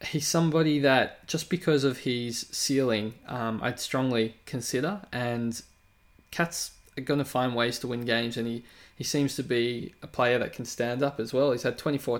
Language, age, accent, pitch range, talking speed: English, 20-39, Australian, 115-140 Hz, 190 wpm